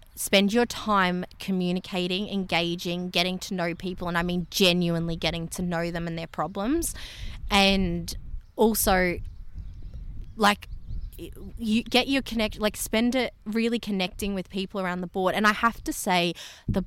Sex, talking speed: female, 155 wpm